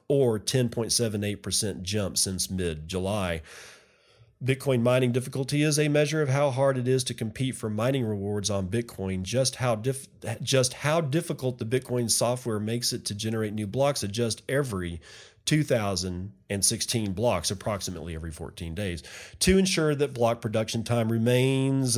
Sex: male